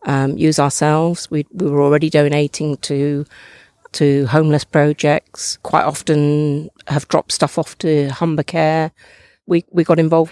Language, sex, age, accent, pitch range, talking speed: English, female, 50-69, British, 150-165 Hz, 145 wpm